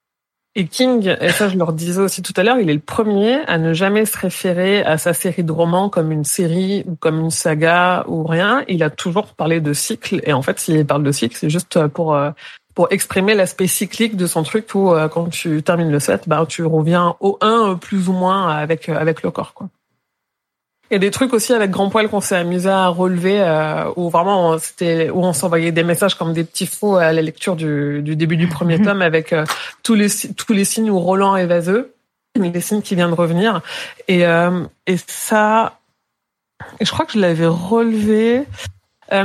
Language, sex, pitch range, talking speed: French, female, 165-200 Hz, 220 wpm